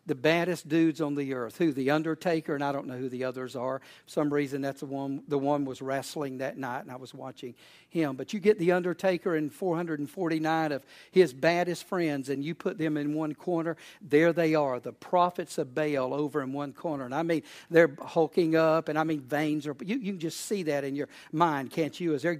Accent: American